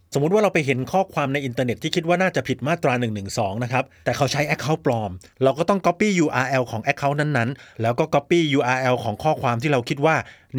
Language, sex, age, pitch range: Thai, male, 30-49, 120-165 Hz